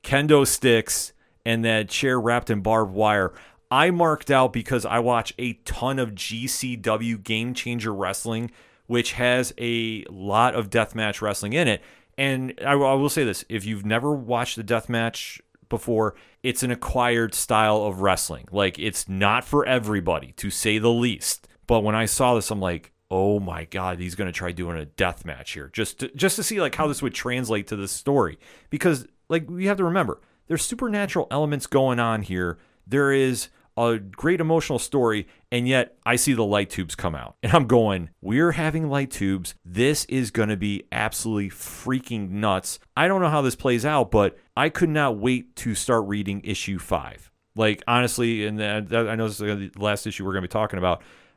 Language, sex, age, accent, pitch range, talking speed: English, male, 30-49, American, 100-125 Hz, 195 wpm